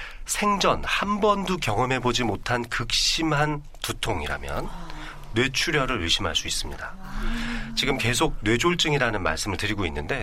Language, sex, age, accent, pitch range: Korean, male, 40-59, native, 95-140 Hz